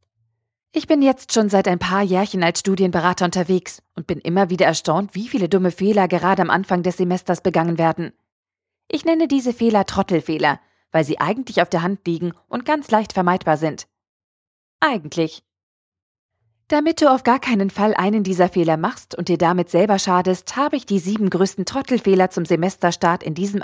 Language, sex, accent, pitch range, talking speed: German, female, German, 170-205 Hz, 180 wpm